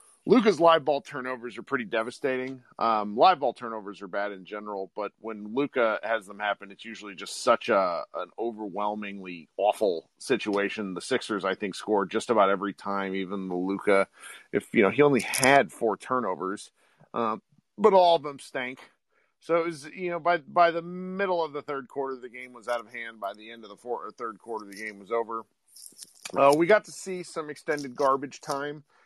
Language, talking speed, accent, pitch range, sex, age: English, 200 wpm, American, 110-140 Hz, male, 40-59